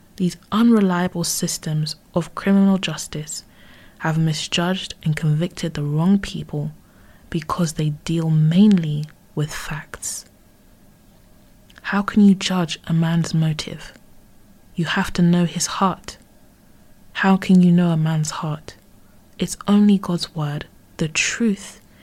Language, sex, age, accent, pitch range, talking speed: English, female, 20-39, British, 155-190 Hz, 125 wpm